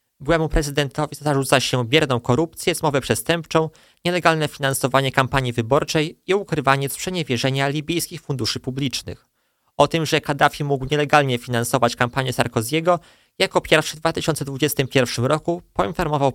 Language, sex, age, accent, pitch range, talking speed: Polish, male, 20-39, native, 130-160 Hz, 120 wpm